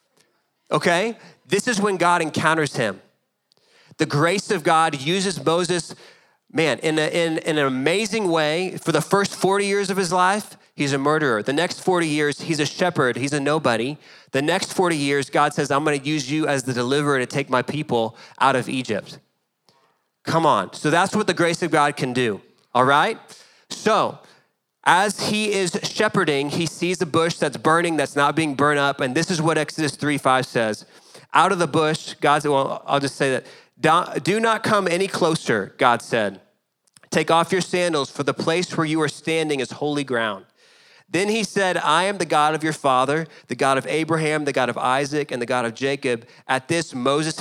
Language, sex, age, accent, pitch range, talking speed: English, male, 30-49, American, 140-180 Hz, 200 wpm